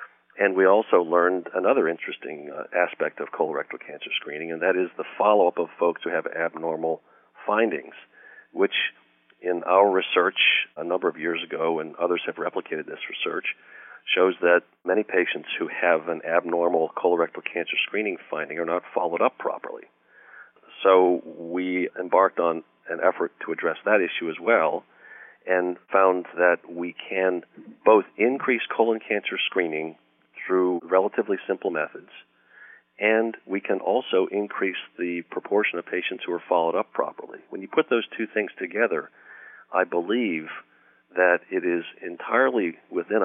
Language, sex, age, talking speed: English, male, 40-59, 150 wpm